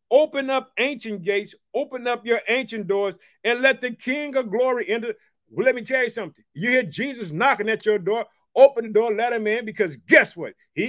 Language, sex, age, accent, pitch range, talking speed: English, male, 50-69, American, 205-250 Hz, 210 wpm